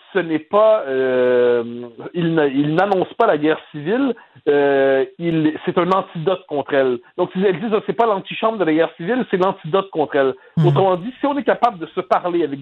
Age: 50-69